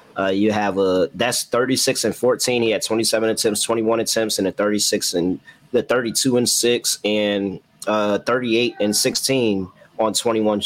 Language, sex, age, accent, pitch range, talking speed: English, male, 20-39, American, 100-115 Hz, 165 wpm